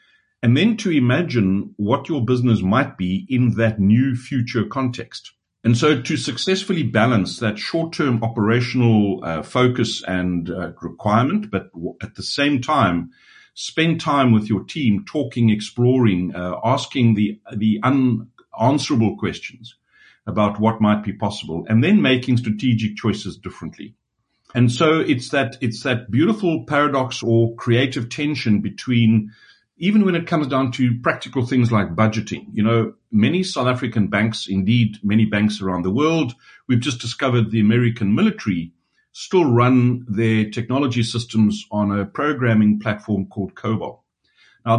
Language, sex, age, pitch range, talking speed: English, male, 60-79, 105-135 Hz, 145 wpm